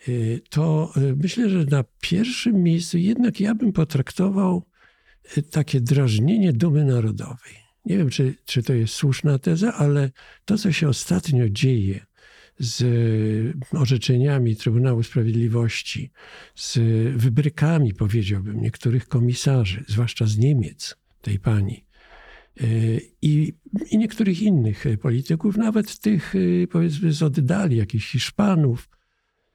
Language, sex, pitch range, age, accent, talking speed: Polish, male, 120-170 Hz, 50-69, native, 110 wpm